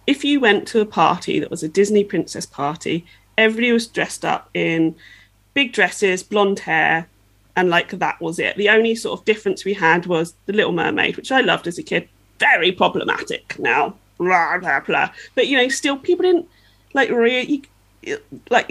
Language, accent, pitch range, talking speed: English, British, 190-275 Hz, 185 wpm